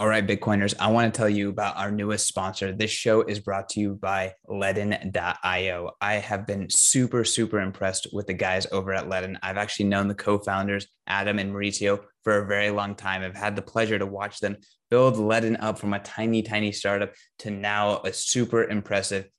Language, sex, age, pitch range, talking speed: English, male, 20-39, 95-105 Hz, 200 wpm